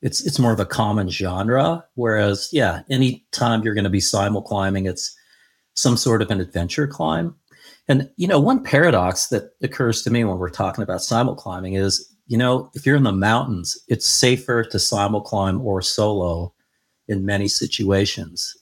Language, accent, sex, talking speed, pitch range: English, American, male, 185 wpm, 95-120 Hz